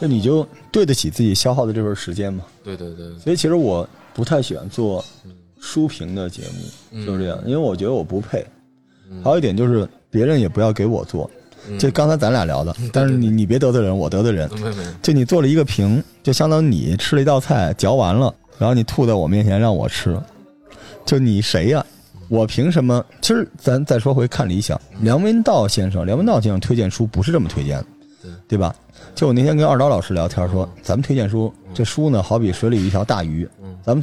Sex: male